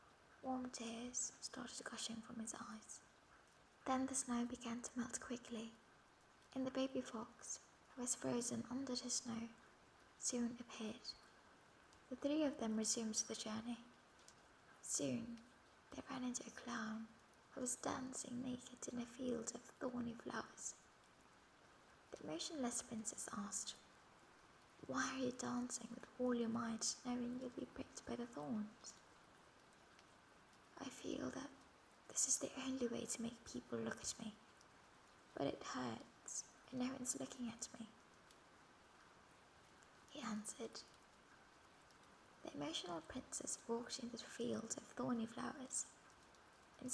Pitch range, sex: 225-255 Hz, female